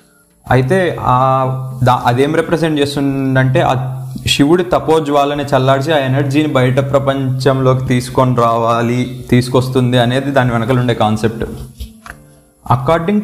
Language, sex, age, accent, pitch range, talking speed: Telugu, male, 20-39, native, 125-145 Hz, 95 wpm